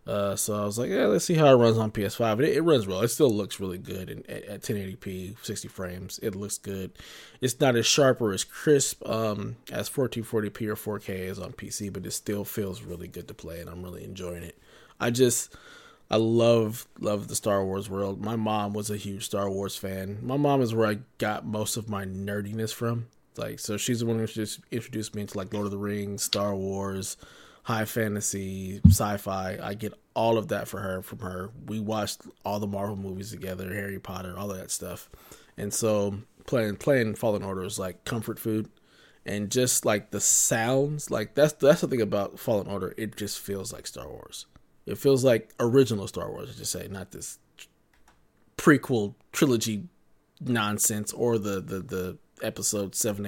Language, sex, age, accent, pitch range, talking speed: English, male, 20-39, American, 95-115 Hz, 200 wpm